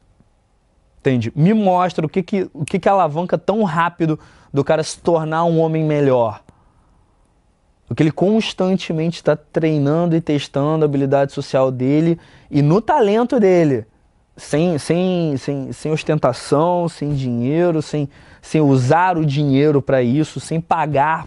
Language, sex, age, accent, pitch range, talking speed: Portuguese, male, 20-39, Brazilian, 130-170 Hz, 145 wpm